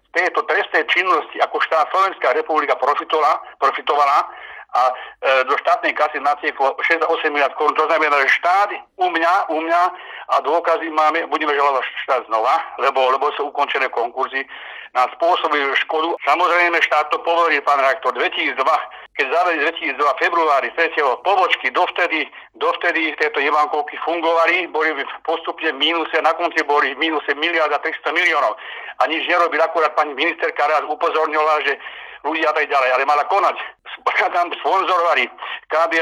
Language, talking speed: Slovak, 140 wpm